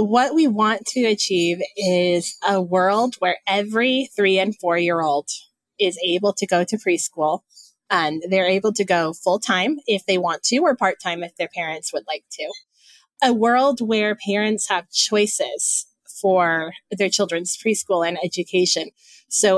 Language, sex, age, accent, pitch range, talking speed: English, female, 20-39, American, 170-215 Hz, 165 wpm